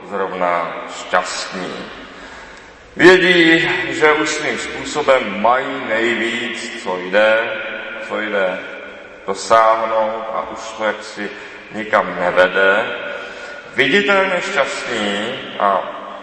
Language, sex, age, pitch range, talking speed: Czech, male, 30-49, 100-125 Hz, 90 wpm